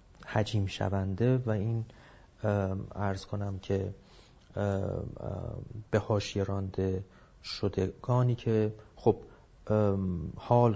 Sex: male